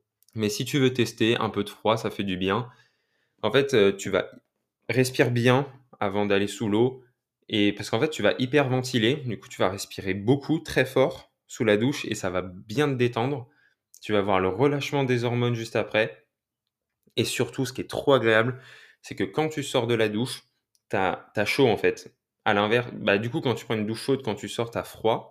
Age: 20-39